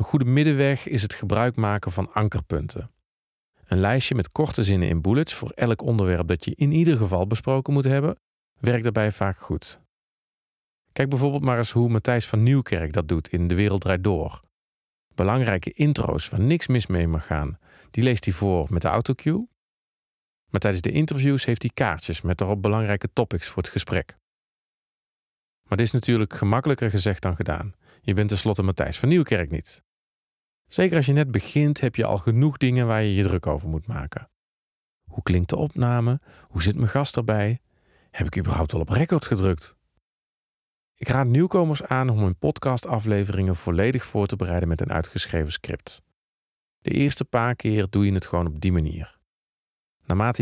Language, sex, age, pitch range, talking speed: Dutch, male, 40-59, 95-130 Hz, 180 wpm